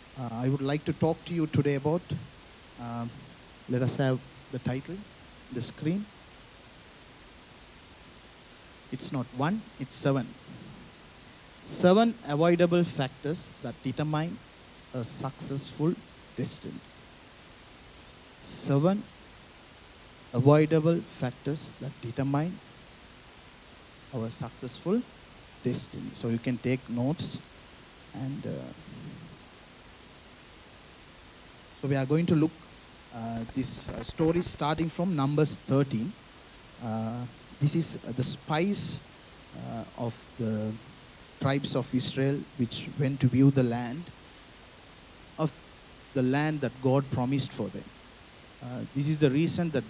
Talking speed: 115 wpm